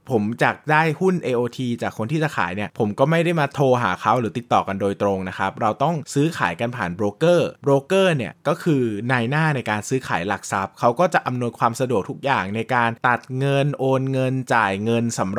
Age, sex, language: 20-39, male, Thai